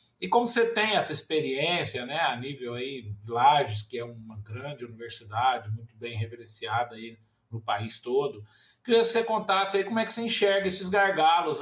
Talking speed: 175 wpm